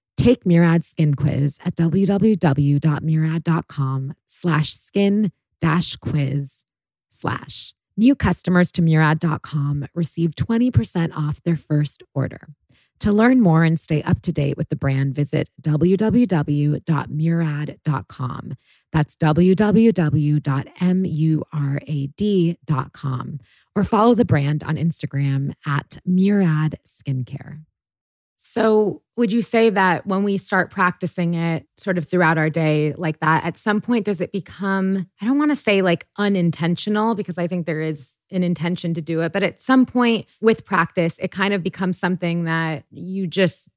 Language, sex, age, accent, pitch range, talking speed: English, female, 20-39, American, 150-185 Hz, 135 wpm